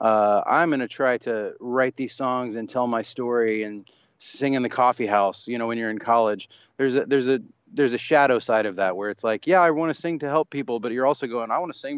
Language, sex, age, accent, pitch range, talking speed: English, male, 20-39, American, 110-140 Hz, 270 wpm